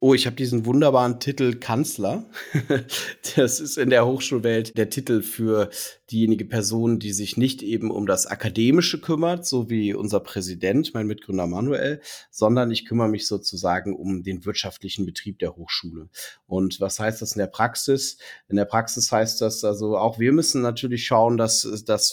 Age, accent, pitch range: 40-59, German, 105-125 Hz